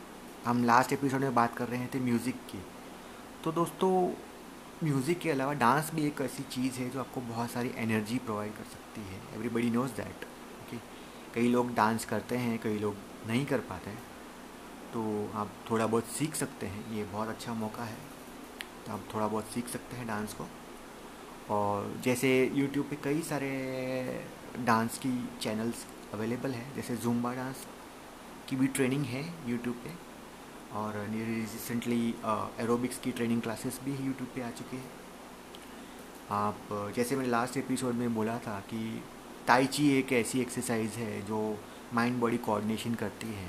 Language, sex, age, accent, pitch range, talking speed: Hindi, male, 30-49, native, 110-130 Hz, 165 wpm